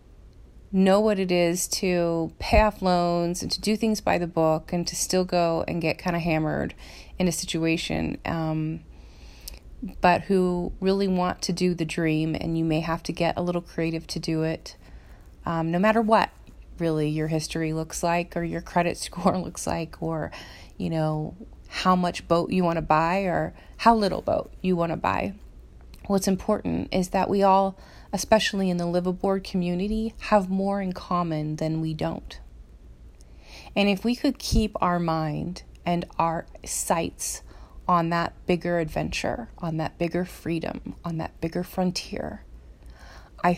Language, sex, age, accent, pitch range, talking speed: English, female, 30-49, American, 160-190 Hz, 170 wpm